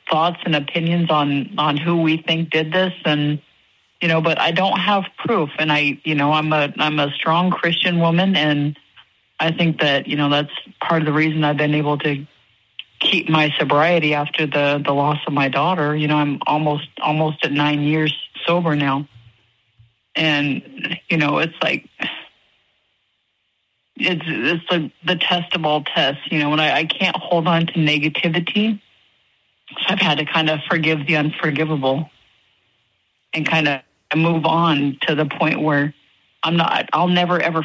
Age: 30-49